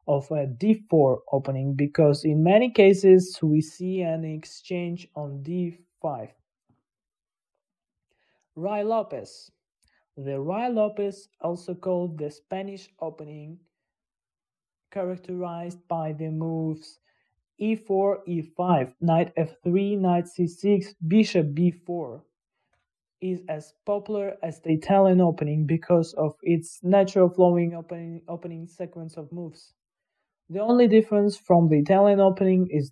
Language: English